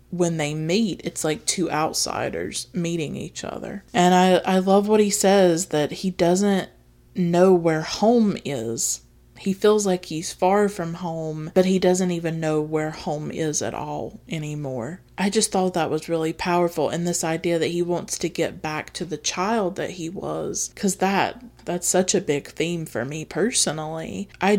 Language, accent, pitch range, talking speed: English, American, 155-180 Hz, 185 wpm